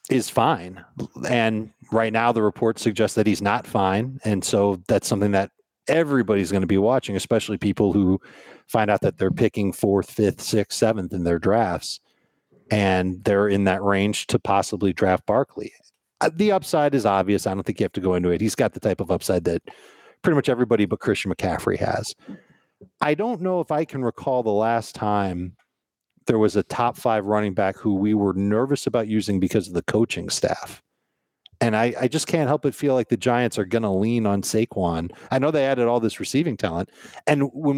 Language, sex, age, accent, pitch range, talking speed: English, male, 40-59, American, 100-130 Hz, 205 wpm